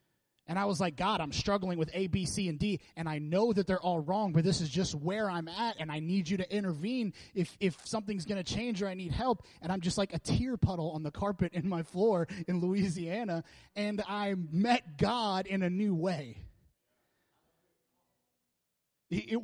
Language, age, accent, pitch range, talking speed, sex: English, 30-49, American, 150-190 Hz, 205 wpm, male